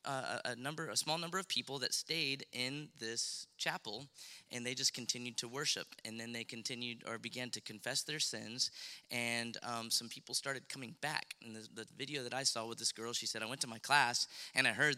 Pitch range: 115-135 Hz